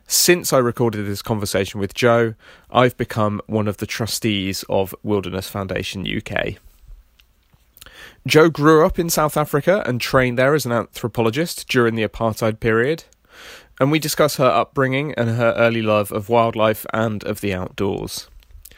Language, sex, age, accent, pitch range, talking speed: English, male, 30-49, British, 105-130 Hz, 155 wpm